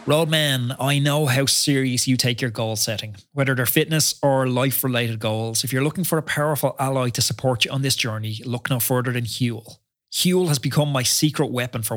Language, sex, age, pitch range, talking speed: English, male, 20-39, 115-140 Hz, 205 wpm